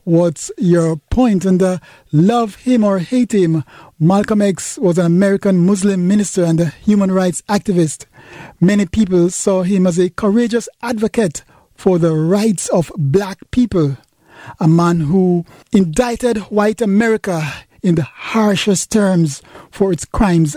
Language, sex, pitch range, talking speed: English, male, 155-190 Hz, 145 wpm